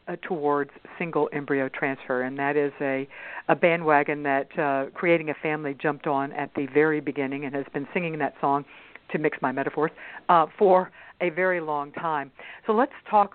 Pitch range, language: 140-170 Hz, English